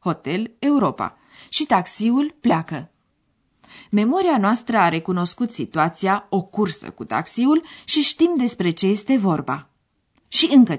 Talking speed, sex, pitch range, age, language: 120 wpm, female, 160-255 Hz, 30-49, Romanian